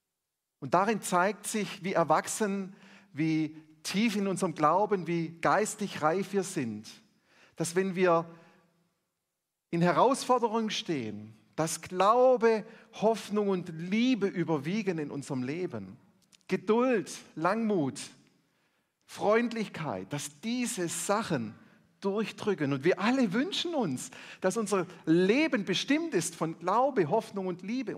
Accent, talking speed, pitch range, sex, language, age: German, 115 wpm, 140-220 Hz, male, German, 40-59